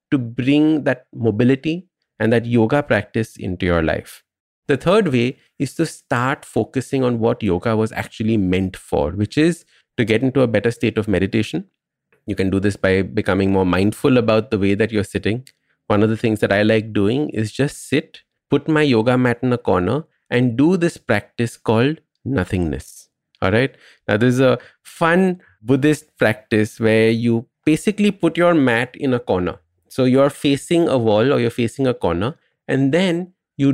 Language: English